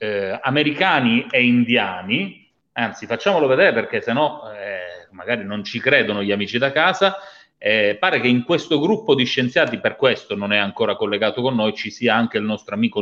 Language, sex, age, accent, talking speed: Italian, male, 30-49, native, 185 wpm